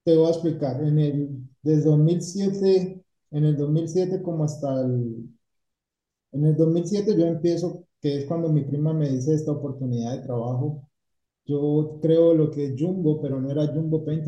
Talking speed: 170 wpm